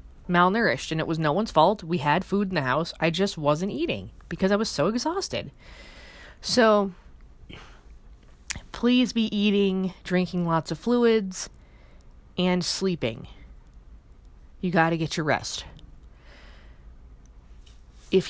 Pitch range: 145-215 Hz